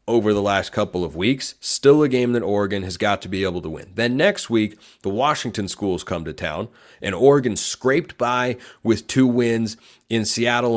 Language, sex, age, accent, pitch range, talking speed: English, male, 30-49, American, 100-125 Hz, 200 wpm